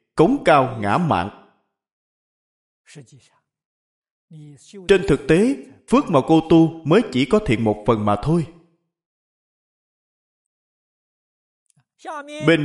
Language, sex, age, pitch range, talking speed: Vietnamese, male, 20-39, 135-205 Hz, 95 wpm